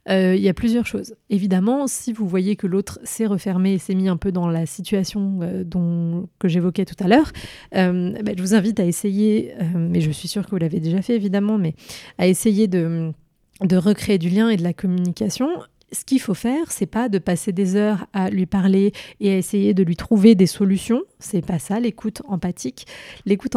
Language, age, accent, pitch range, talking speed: French, 30-49, French, 185-220 Hz, 210 wpm